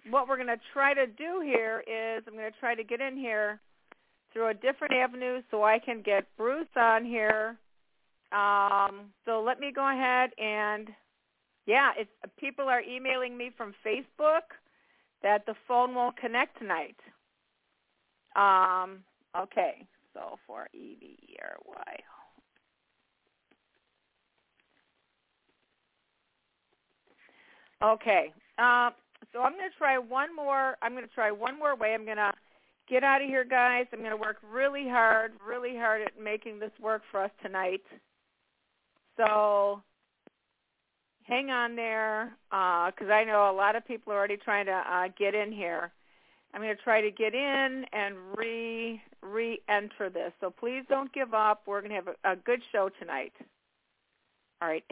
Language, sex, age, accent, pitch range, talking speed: English, female, 50-69, American, 205-255 Hz, 150 wpm